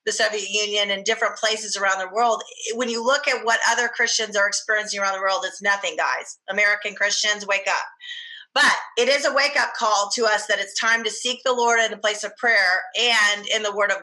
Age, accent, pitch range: 30-49, American, 195-240 Hz